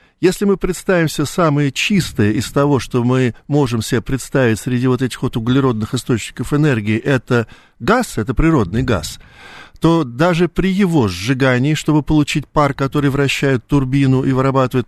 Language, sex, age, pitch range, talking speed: Russian, male, 50-69, 120-165 Hz, 155 wpm